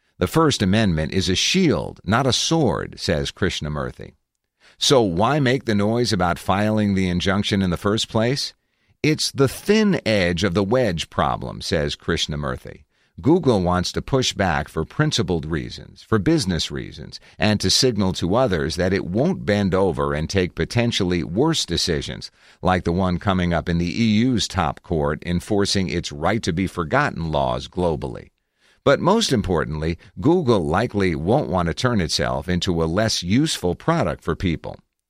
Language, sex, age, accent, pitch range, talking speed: English, male, 50-69, American, 85-115 Hz, 155 wpm